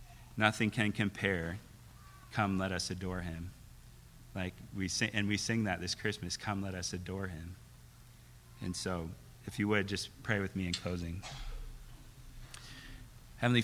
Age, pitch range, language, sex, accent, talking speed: 40-59, 100-120 Hz, English, male, American, 150 wpm